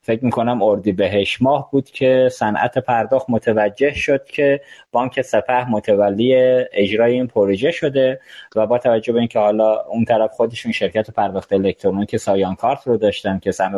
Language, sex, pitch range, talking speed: Persian, male, 105-135 Hz, 155 wpm